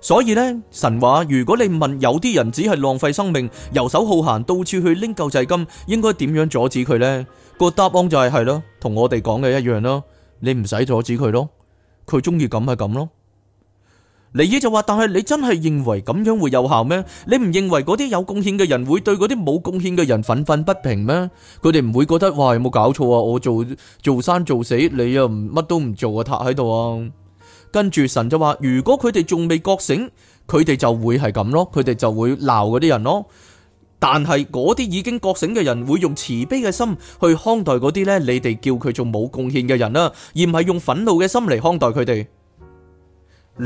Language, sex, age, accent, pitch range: Chinese, male, 20-39, native, 120-180 Hz